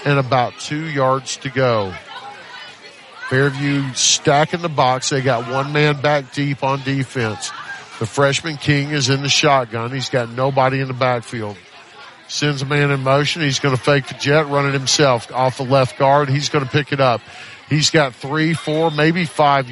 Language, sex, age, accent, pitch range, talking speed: English, male, 40-59, American, 125-150 Hz, 185 wpm